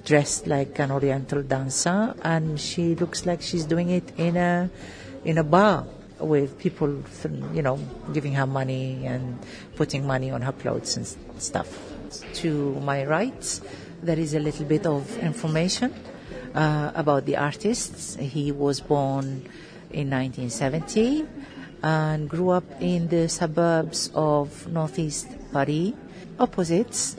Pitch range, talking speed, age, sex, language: 140-170 Hz, 135 wpm, 50-69, female, English